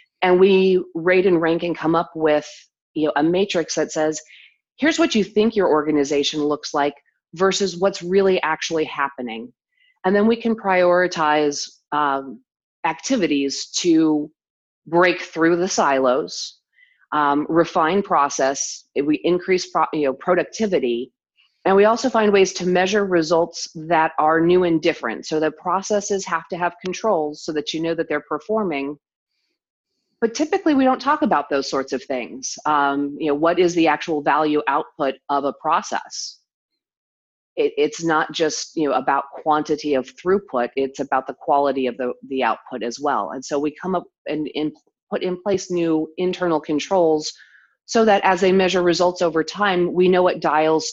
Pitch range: 150-185 Hz